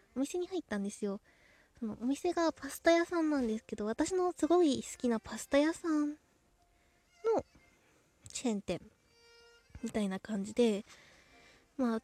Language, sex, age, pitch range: Japanese, female, 20-39, 220-305 Hz